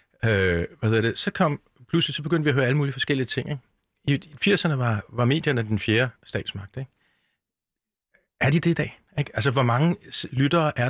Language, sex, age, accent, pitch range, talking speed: Danish, male, 40-59, native, 105-150 Hz, 195 wpm